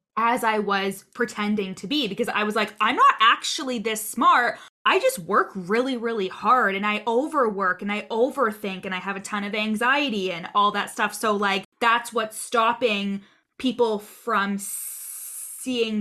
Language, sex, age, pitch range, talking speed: English, female, 20-39, 200-245 Hz, 170 wpm